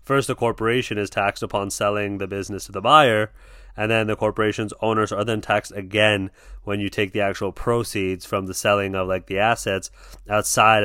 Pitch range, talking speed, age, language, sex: 100-110 Hz, 195 wpm, 30-49, English, male